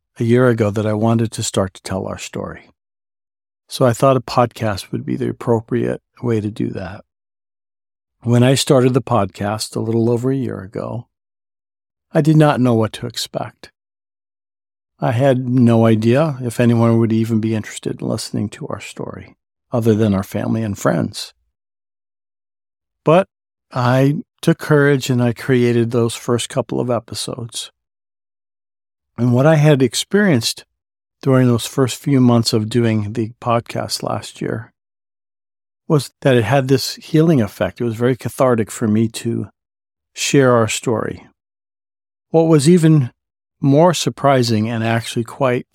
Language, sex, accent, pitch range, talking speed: English, male, American, 100-130 Hz, 155 wpm